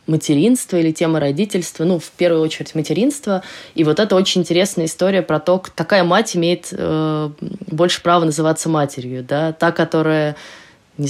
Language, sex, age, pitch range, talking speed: Russian, female, 20-39, 150-190 Hz, 155 wpm